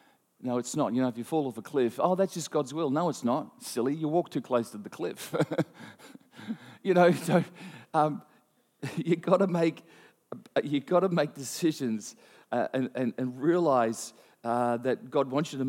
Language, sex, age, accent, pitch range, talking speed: English, male, 40-59, Australian, 125-170 Hz, 195 wpm